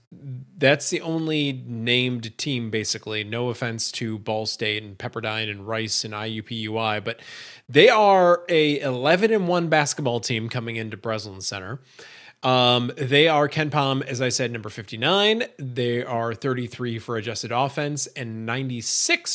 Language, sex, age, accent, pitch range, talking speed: English, male, 30-49, American, 120-170 Hz, 150 wpm